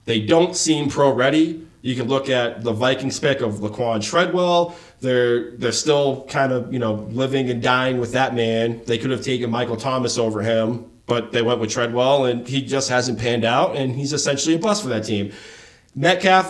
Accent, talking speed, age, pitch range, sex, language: American, 200 wpm, 30-49, 120-155 Hz, male, English